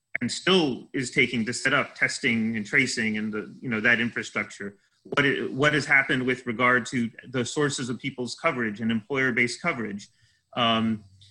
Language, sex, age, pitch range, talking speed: English, male, 30-49, 110-135 Hz, 180 wpm